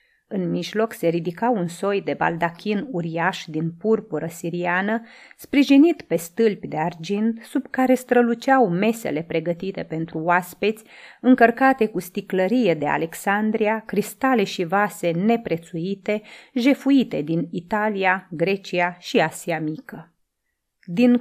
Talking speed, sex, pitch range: 115 wpm, female, 175-235 Hz